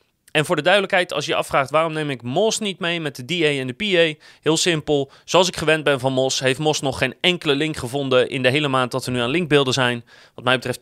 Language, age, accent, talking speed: Dutch, 30-49, Dutch, 265 wpm